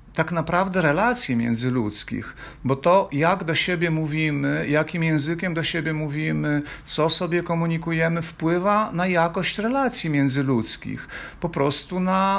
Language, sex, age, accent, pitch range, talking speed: Polish, male, 50-69, native, 155-190 Hz, 125 wpm